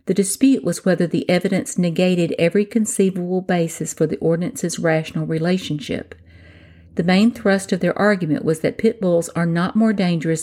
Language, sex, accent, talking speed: English, female, American, 165 wpm